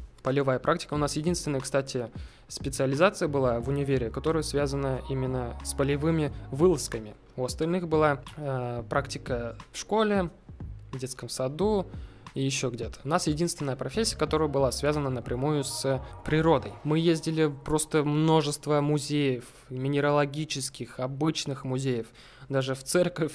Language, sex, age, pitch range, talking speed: Russian, male, 20-39, 120-150 Hz, 130 wpm